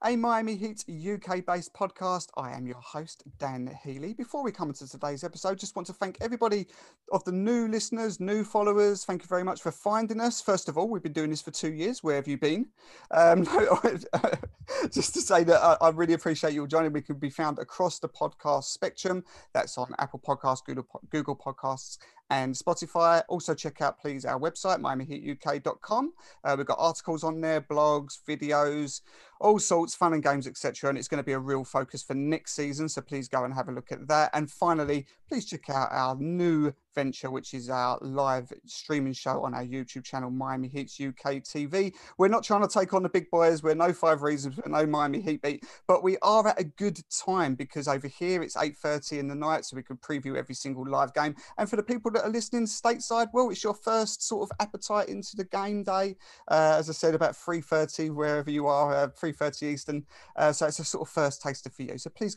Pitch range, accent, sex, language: 140-190 Hz, British, male, English